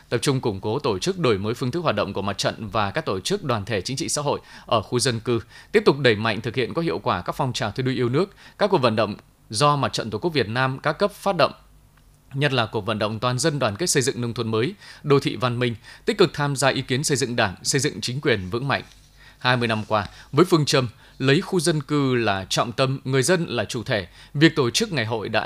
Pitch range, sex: 115-145 Hz, male